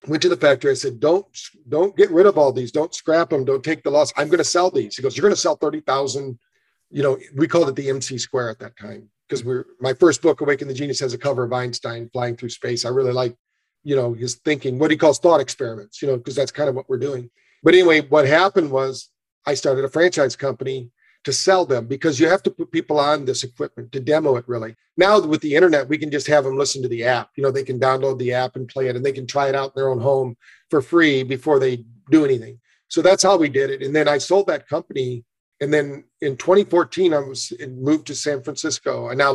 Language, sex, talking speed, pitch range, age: English, male, 260 wpm, 125-150 Hz, 50-69